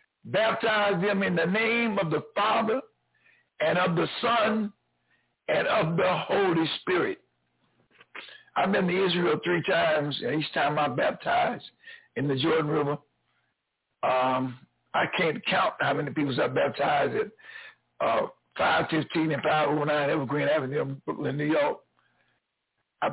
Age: 60-79